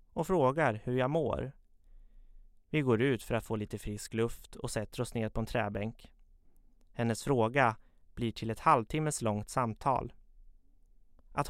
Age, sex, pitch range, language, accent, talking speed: 30-49, male, 95-120 Hz, Swedish, native, 155 wpm